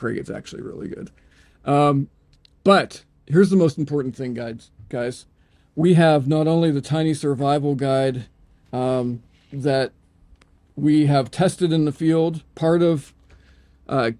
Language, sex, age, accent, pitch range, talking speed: English, male, 40-59, American, 120-145 Hz, 135 wpm